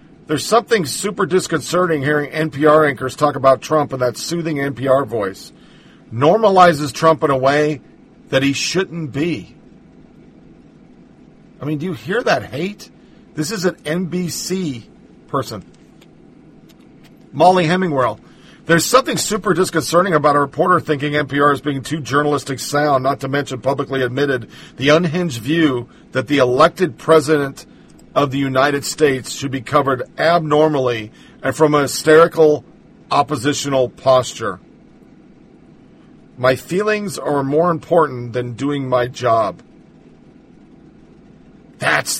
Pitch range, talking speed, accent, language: 135-170 Hz, 125 wpm, American, English